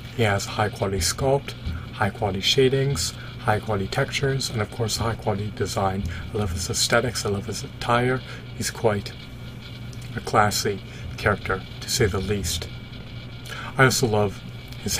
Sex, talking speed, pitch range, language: male, 135 wpm, 105-120 Hz, English